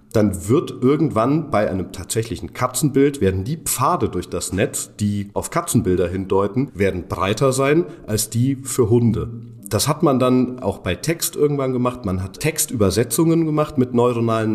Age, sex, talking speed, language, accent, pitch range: 40-59, male, 160 wpm, German, German, 100-130 Hz